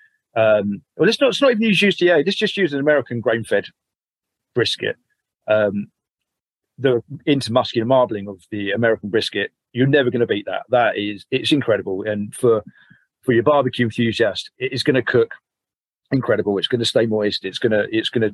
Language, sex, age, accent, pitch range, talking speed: English, male, 40-59, British, 105-130 Hz, 175 wpm